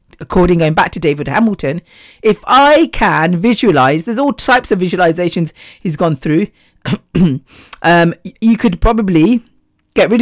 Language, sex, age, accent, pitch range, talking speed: English, female, 40-59, British, 165-220 Hz, 140 wpm